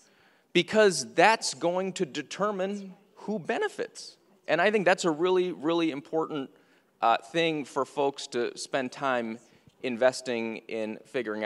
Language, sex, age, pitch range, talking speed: English, male, 30-49, 110-160 Hz, 130 wpm